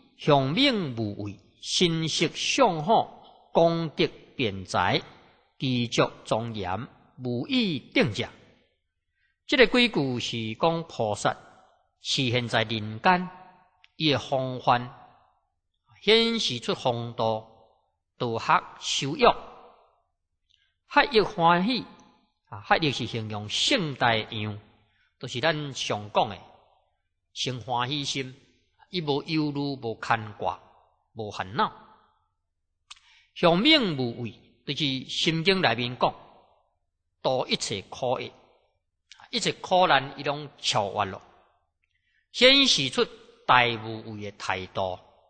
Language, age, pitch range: Chinese, 50-69, 110-165 Hz